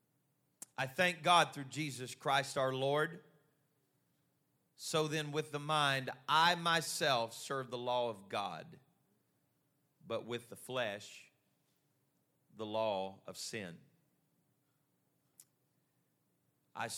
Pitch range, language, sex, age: 110-145 Hz, English, male, 40-59